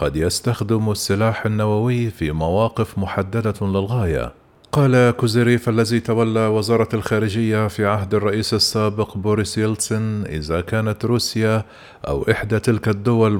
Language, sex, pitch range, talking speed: Arabic, male, 105-115 Hz, 120 wpm